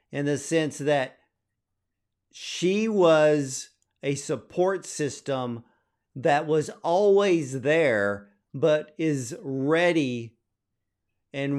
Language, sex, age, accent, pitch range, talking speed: English, male, 50-69, American, 130-165 Hz, 90 wpm